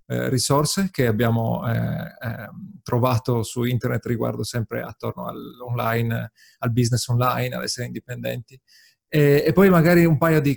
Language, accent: Italian, native